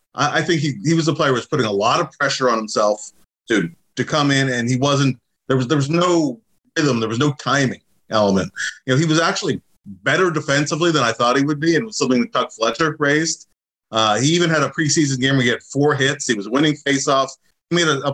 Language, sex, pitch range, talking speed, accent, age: English, male, 125-155 Hz, 245 wpm, American, 30-49